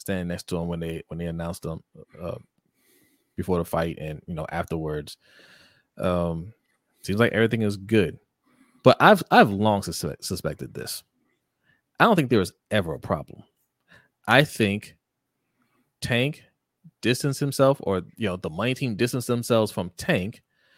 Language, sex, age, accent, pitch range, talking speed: English, male, 30-49, American, 95-125 Hz, 155 wpm